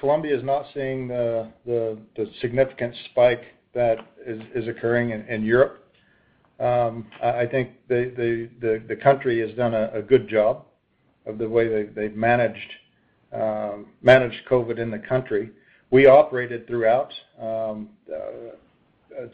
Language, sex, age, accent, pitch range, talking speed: English, male, 50-69, American, 115-125 Hz, 150 wpm